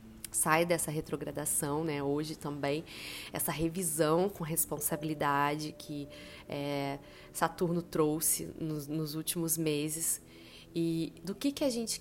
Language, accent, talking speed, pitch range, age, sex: Portuguese, Brazilian, 120 wpm, 150-180 Hz, 20-39, female